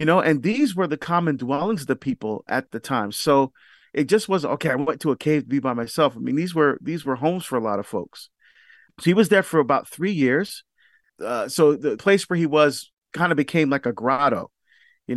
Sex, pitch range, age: male, 135-175 Hz, 40-59